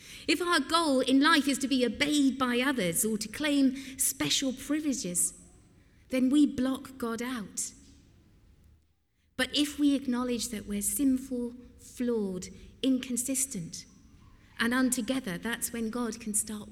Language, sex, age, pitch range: English, female, 50-69, 195-265 Hz